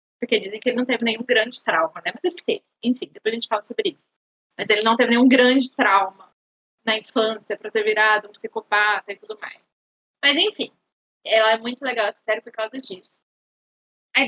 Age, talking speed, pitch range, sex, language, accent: 20-39, 205 wpm, 205-250 Hz, female, Portuguese, Brazilian